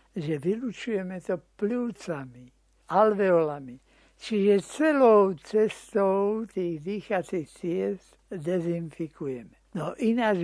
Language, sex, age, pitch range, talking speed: Slovak, male, 60-79, 160-200 Hz, 80 wpm